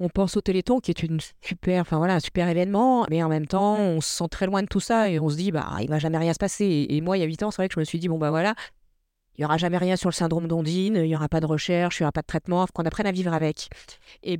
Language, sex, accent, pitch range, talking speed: French, female, French, 165-195 Hz, 345 wpm